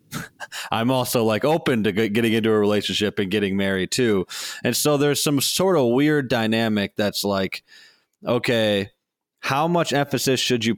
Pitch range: 105-125 Hz